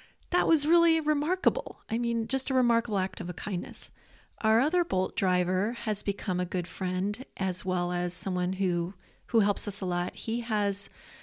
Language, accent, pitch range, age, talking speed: English, American, 180-205 Hz, 30-49, 180 wpm